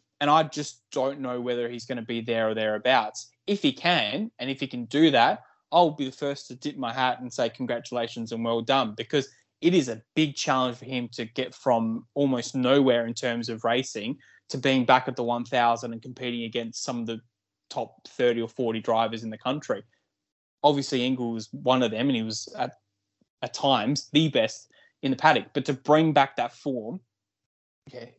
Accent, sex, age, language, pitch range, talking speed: Australian, male, 20-39, English, 115-140 Hz, 205 wpm